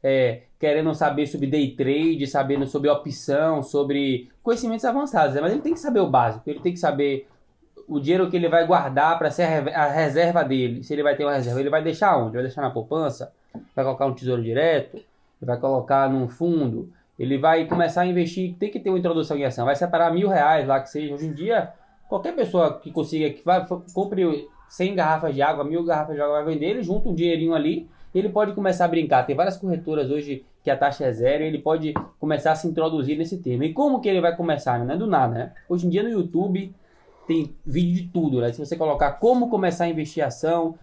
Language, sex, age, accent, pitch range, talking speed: Portuguese, male, 20-39, Brazilian, 145-175 Hz, 230 wpm